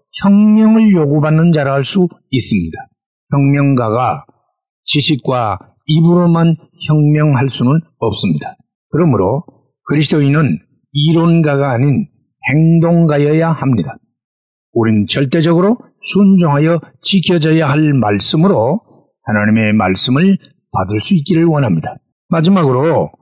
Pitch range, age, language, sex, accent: 130-185 Hz, 50-69, Korean, male, native